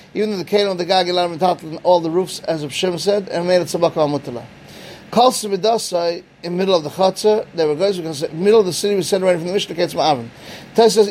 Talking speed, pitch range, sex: 275 wpm, 170-200 Hz, male